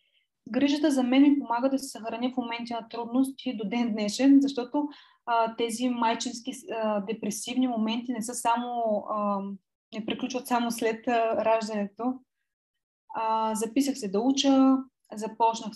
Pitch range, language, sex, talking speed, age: 220-265 Hz, Bulgarian, female, 145 wpm, 20-39